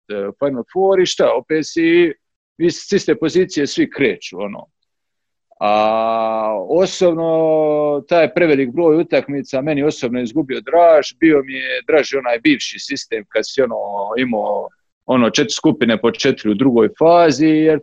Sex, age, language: male, 50-69, Croatian